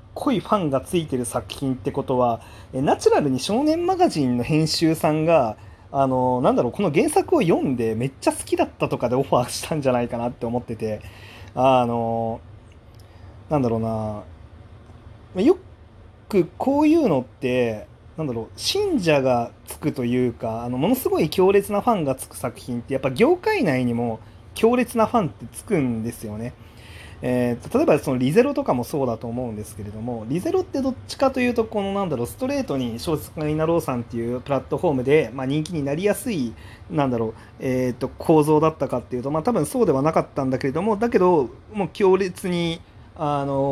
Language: Japanese